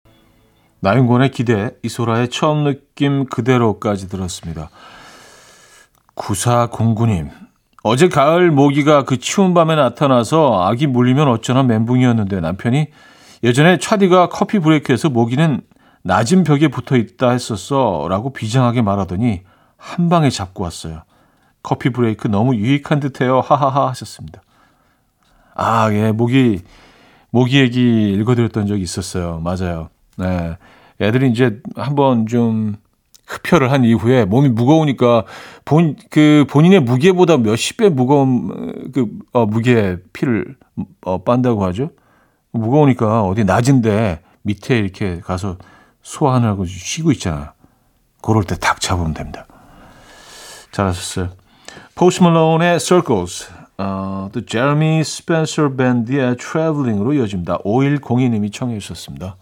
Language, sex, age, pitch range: Korean, male, 40-59, 100-140 Hz